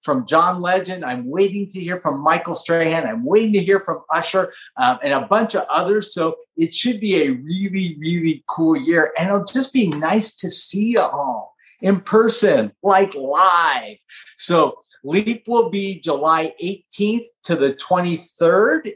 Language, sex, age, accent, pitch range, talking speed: English, male, 50-69, American, 160-210 Hz, 170 wpm